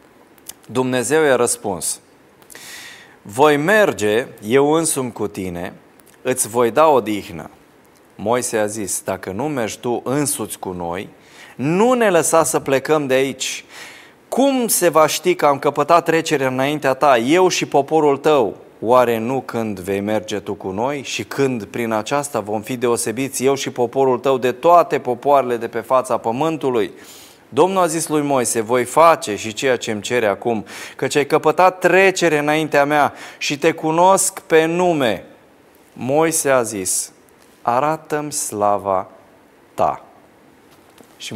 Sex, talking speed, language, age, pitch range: male, 150 wpm, Romanian, 20-39, 115-155 Hz